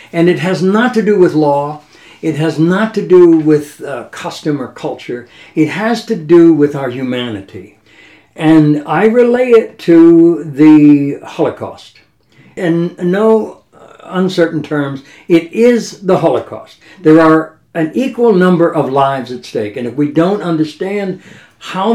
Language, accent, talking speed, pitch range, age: English, American, 150 wpm, 120-170 Hz, 60-79